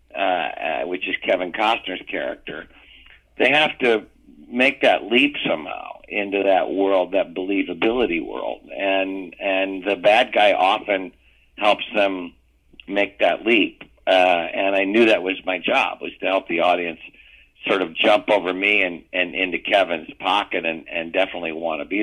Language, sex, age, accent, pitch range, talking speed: English, male, 60-79, American, 85-100 Hz, 160 wpm